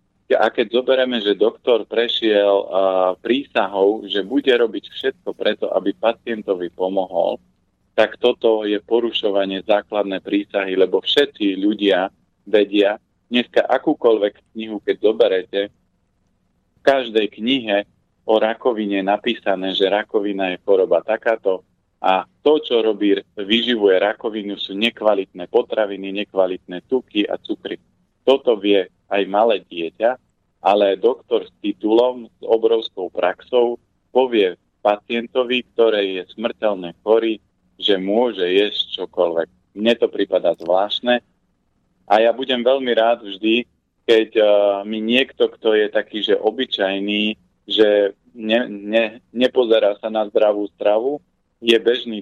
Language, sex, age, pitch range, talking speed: Slovak, male, 40-59, 100-120 Hz, 120 wpm